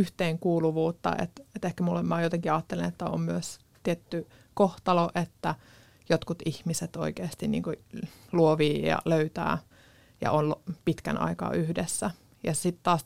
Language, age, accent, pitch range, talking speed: Finnish, 20-39, native, 160-185 Hz, 135 wpm